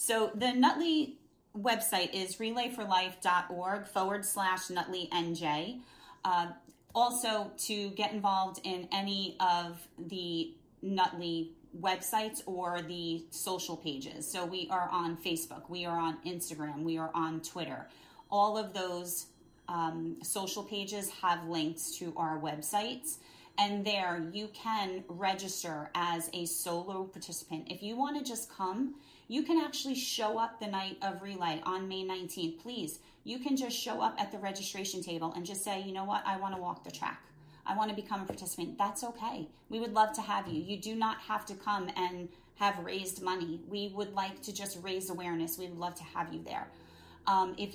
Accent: American